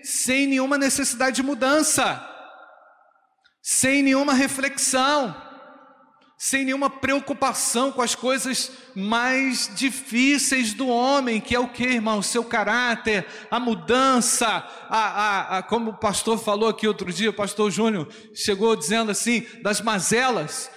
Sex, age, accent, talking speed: male, 40-59, Brazilian, 125 wpm